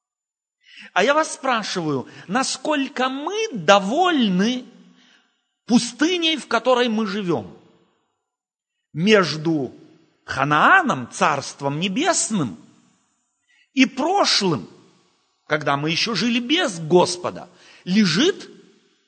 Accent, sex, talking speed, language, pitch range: native, male, 80 wpm, Russian, 180-265 Hz